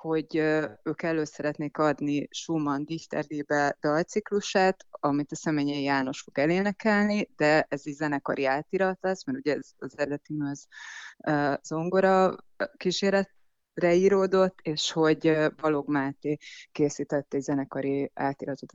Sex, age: female, 30-49